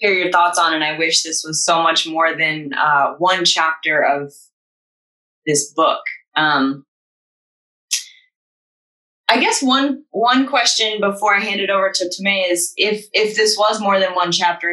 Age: 20-39